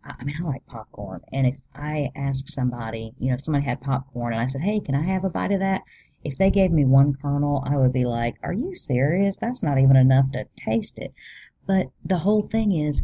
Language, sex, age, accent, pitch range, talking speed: English, female, 40-59, American, 130-160 Hz, 240 wpm